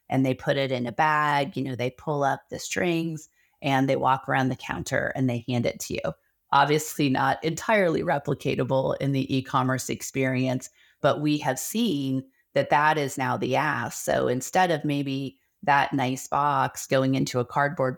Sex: female